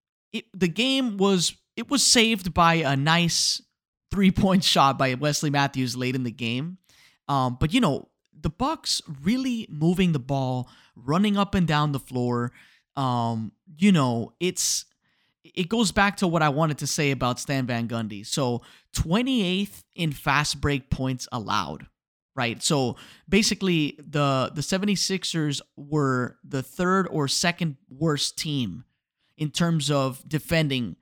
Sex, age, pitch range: male, 20-39, 130-175 Hz